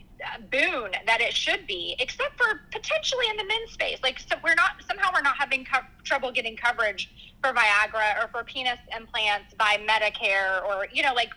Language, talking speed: English, 185 wpm